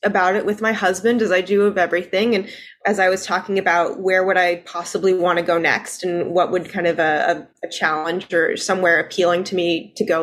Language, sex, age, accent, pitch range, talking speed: English, female, 20-39, American, 180-210 Hz, 235 wpm